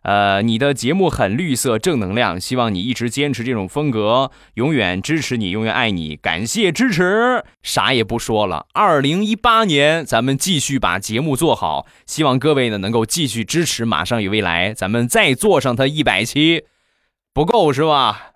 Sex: male